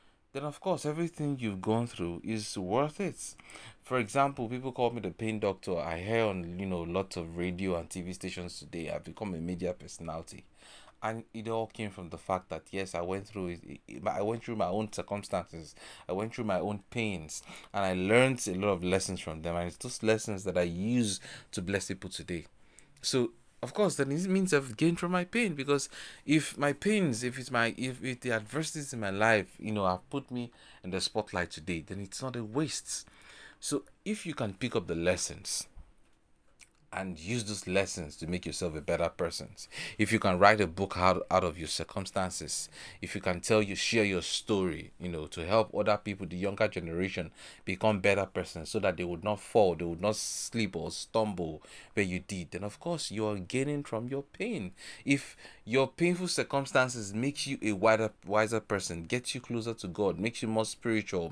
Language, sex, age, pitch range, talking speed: English, male, 30-49, 90-125 Hz, 210 wpm